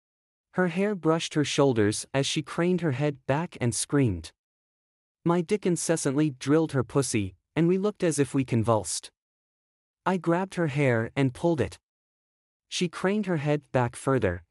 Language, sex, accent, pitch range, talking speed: English, male, American, 120-170 Hz, 160 wpm